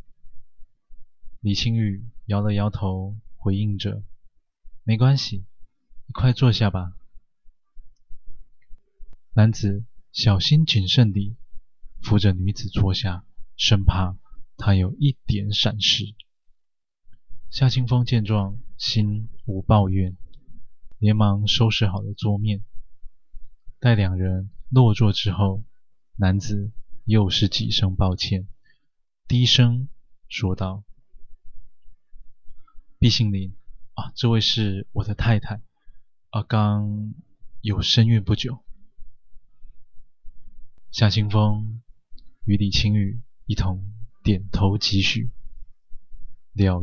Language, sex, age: Chinese, male, 20-39